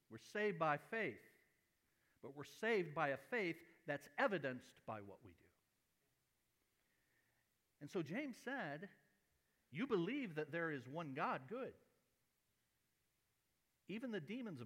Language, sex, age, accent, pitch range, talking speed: English, male, 60-79, American, 135-210 Hz, 125 wpm